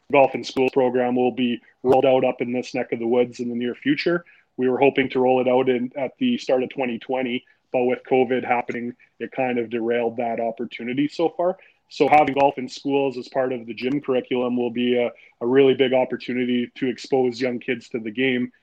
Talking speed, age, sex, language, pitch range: 220 wpm, 30-49, male, English, 120-135 Hz